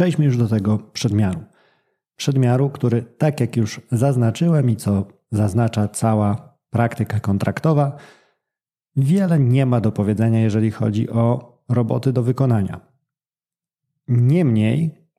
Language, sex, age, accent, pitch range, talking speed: Polish, male, 40-59, native, 105-140 Hz, 115 wpm